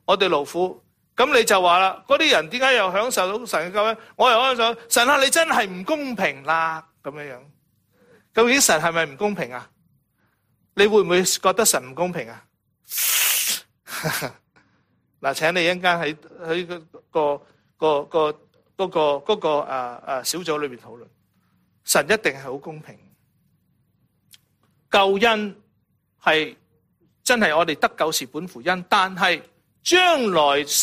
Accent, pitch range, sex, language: Chinese, 145-210 Hz, male, English